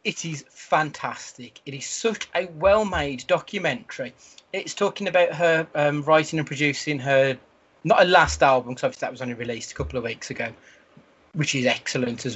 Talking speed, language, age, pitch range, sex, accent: 180 wpm, English, 30-49, 125-155 Hz, male, British